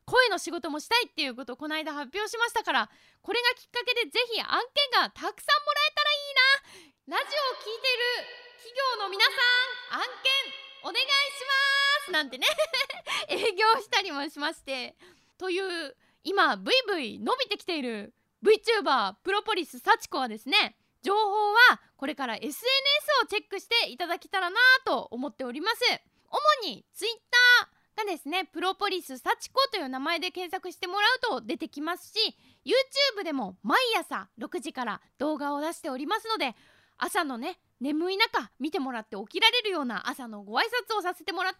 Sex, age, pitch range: female, 20-39, 290-455 Hz